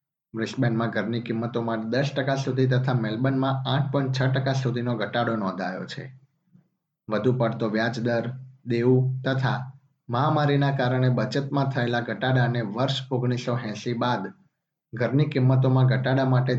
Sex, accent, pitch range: male, native, 120-140 Hz